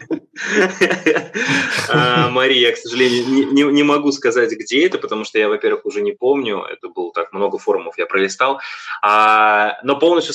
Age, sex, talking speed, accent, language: 20-39, male, 155 wpm, native, Russian